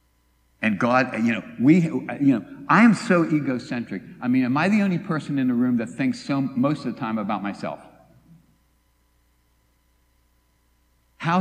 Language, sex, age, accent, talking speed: English, male, 60-79, American, 165 wpm